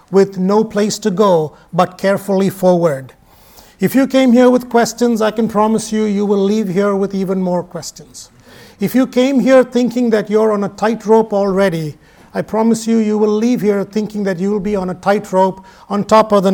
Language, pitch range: English, 195-240 Hz